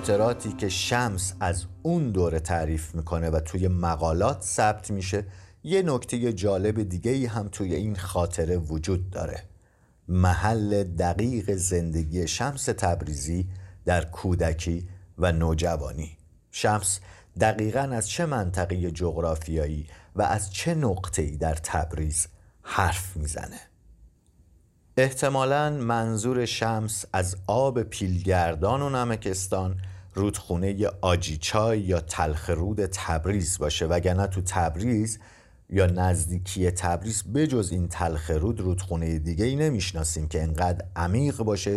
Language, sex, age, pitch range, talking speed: Persian, male, 50-69, 85-105 Hz, 115 wpm